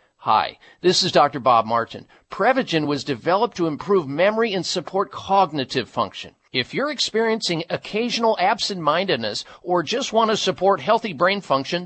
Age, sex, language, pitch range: 50-69, male, English, 155-220 Hz